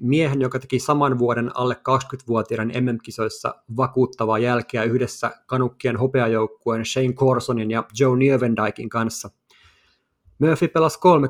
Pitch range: 120-140 Hz